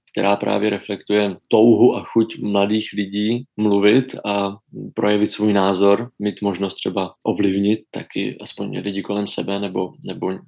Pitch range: 95-110 Hz